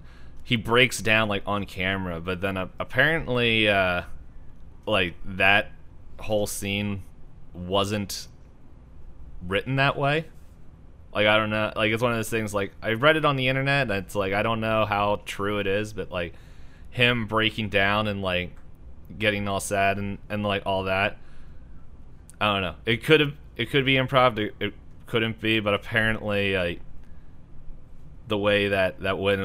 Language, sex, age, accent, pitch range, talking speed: English, male, 30-49, American, 85-105 Hz, 165 wpm